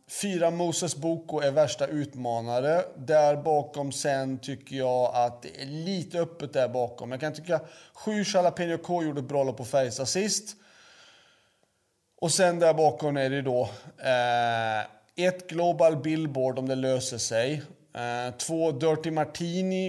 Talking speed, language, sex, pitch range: 155 wpm, Swedish, male, 125-165 Hz